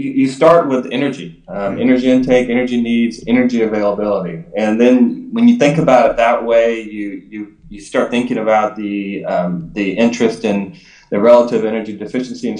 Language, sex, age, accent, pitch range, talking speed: English, male, 20-39, American, 100-120 Hz, 170 wpm